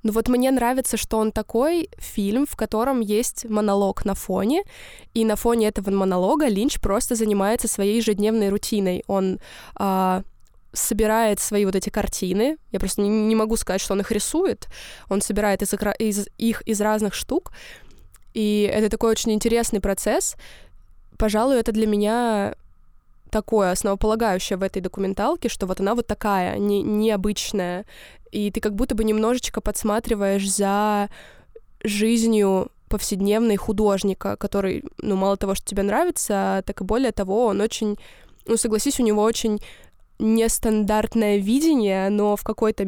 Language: Russian